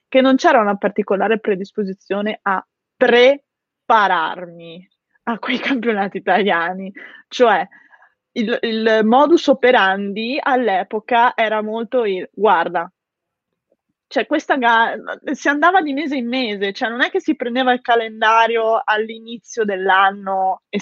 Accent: native